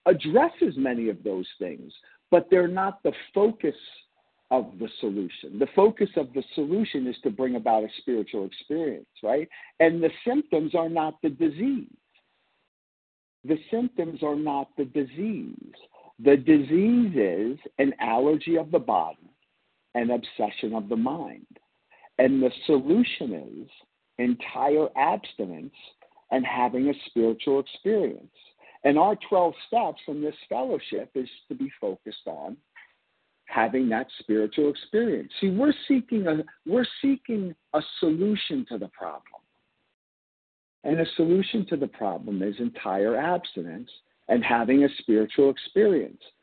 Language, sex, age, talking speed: English, male, 50-69, 135 wpm